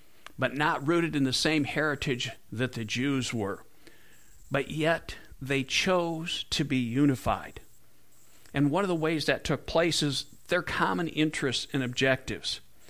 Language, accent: English, American